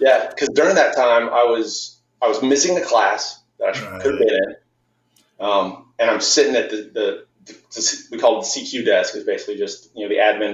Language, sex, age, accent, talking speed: English, male, 30-49, American, 230 wpm